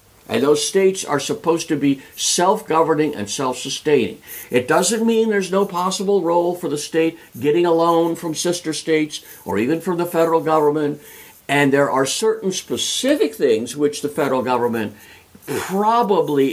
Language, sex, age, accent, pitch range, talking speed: English, male, 60-79, American, 120-170 Hz, 155 wpm